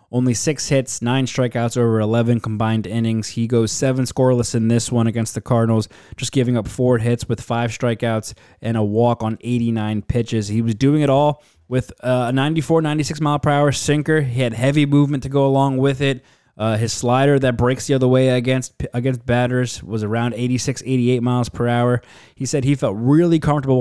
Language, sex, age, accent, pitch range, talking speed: English, male, 20-39, American, 110-125 Hz, 185 wpm